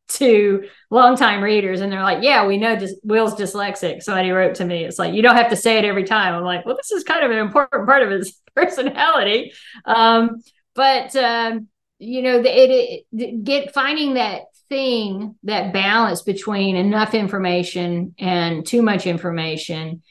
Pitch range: 180-235 Hz